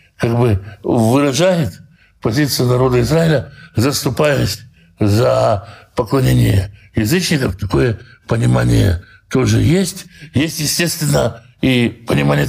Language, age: Russian, 60-79